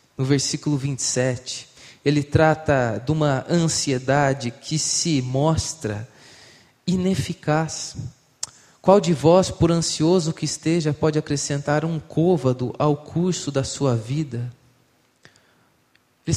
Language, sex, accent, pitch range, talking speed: Portuguese, male, Brazilian, 125-150 Hz, 105 wpm